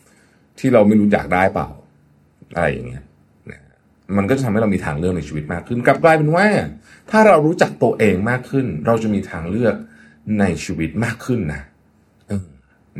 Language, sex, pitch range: Thai, male, 80-125 Hz